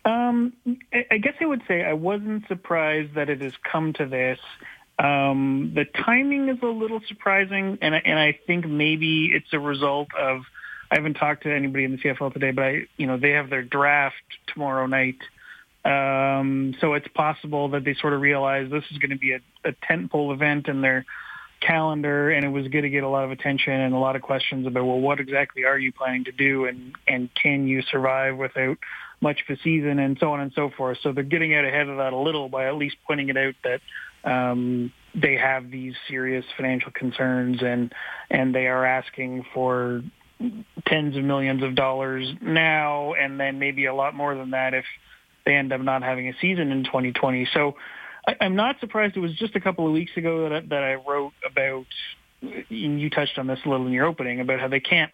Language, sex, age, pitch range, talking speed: English, male, 30-49, 130-155 Hz, 215 wpm